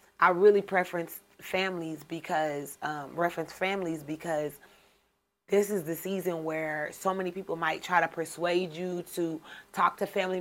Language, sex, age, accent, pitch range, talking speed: English, female, 30-49, American, 170-200 Hz, 135 wpm